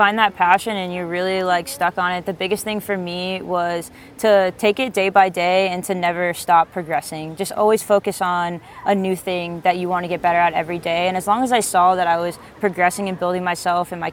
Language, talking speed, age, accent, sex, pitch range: English, 245 wpm, 20-39, American, female, 175-195 Hz